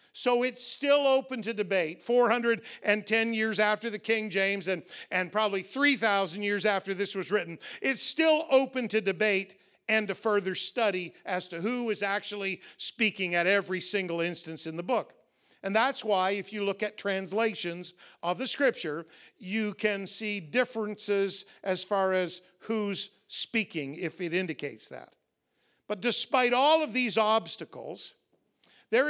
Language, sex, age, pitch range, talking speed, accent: English, male, 50-69, 185-240 Hz, 155 wpm, American